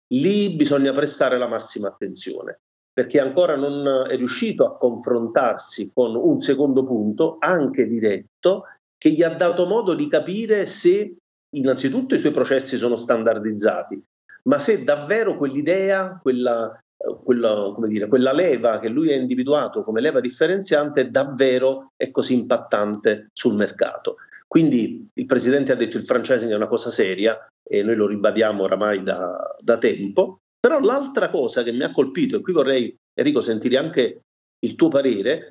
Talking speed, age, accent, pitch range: 150 wpm, 40-59, native, 125-185 Hz